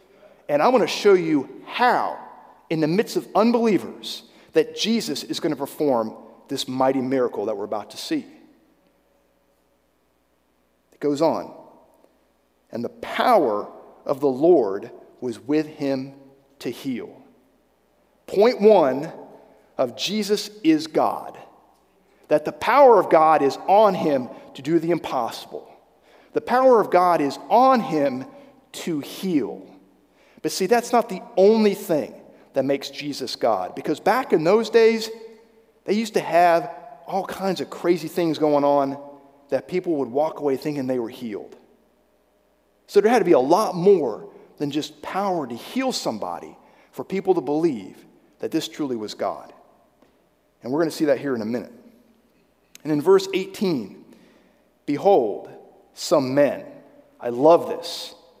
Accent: American